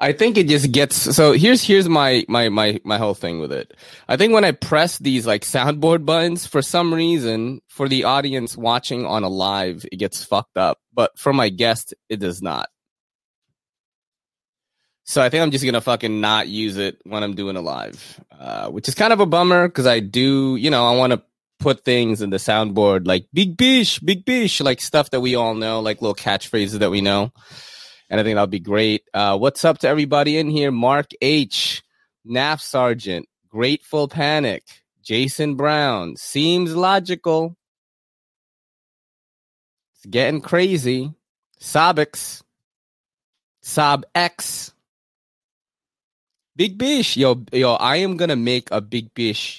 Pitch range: 110-155 Hz